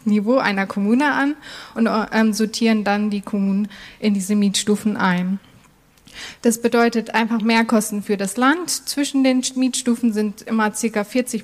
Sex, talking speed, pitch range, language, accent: female, 145 wpm, 205-245 Hz, German, German